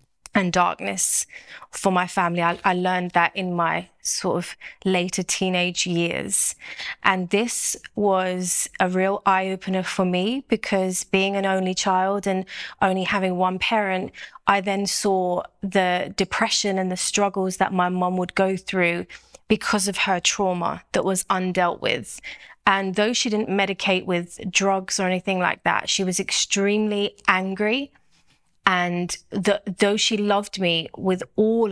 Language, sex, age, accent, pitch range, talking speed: English, female, 20-39, British, 180-200 Hz, 150 wpm